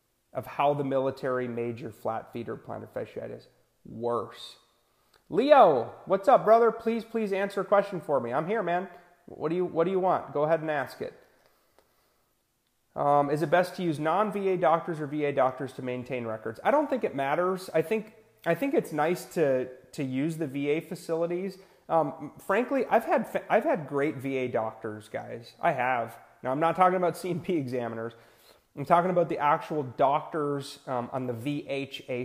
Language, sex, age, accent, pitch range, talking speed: English, male, 30-49, American, 120-170 Hz, 180 wpm